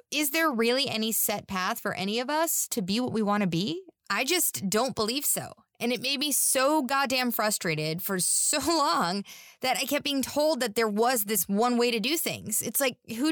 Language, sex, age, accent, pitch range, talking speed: English, female, 20-39, American, 190-265 Hz, 220 wpm